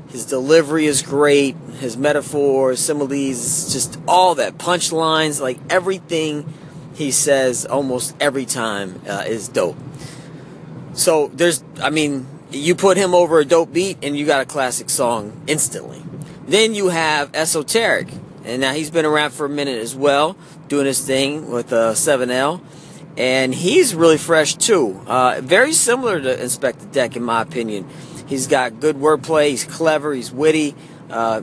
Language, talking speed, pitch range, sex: English, 160 wpm, 130-160 Hz, male